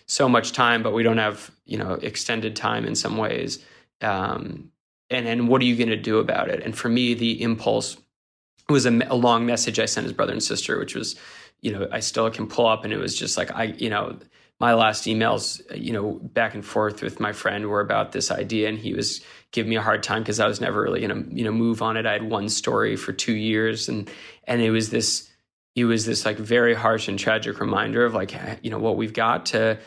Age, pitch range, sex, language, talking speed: 20-39, 110-120 Hz, male, English, 245 wpm